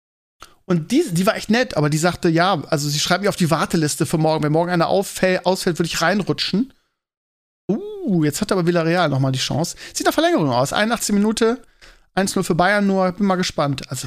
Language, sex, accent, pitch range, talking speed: German, male, German, 155-210 Hz, 215 wpm